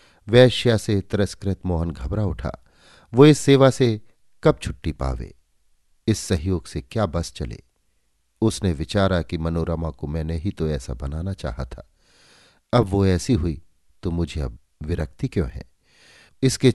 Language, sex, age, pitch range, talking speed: Hindi, male, 50-69, 75-105 Hz, 150 wpm